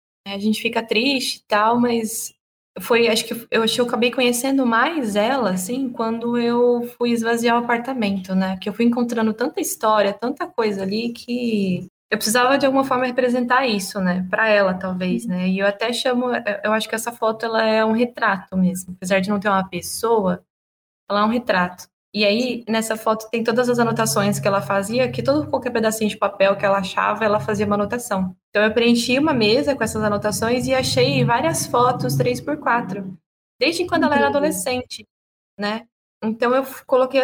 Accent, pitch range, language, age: Brazilian, 200-245 Hz, Portuguese, 20-39